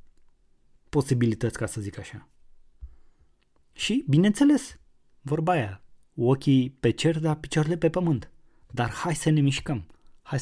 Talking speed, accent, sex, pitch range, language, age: 125 wpm, native, male, 115-135 Hz, Romanian, 20-39